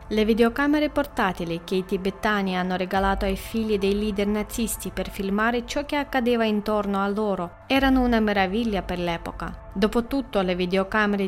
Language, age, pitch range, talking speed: Italian, 20-39, 200-250 Hz, 155 wpm